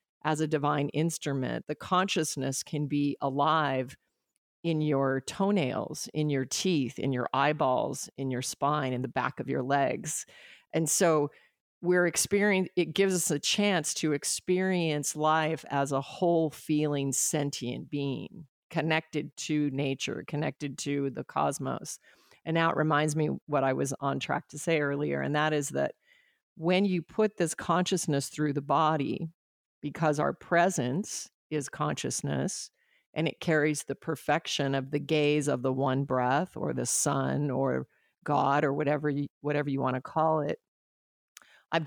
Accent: American